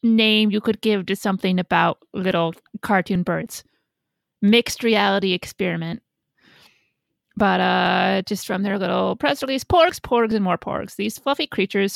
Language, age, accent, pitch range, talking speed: English, 30-49, American, 185-235 Hz, 145 wpm